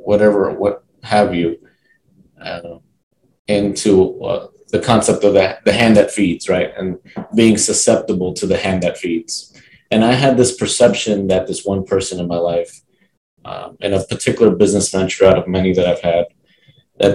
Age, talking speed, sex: 20-39, 170 wpm, male